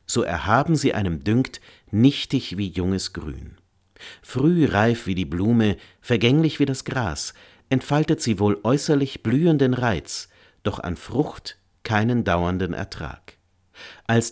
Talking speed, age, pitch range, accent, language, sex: 130 wpm, 50-69, 90-115 Hz, German, German, male